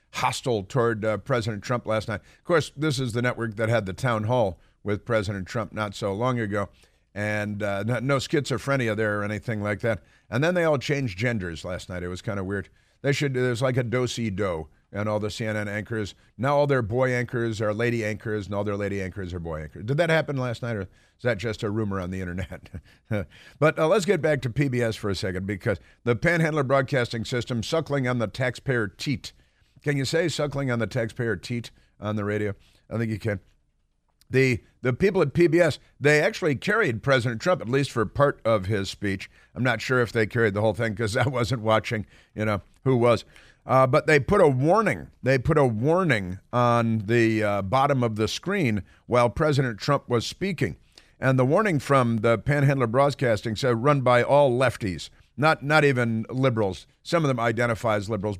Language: English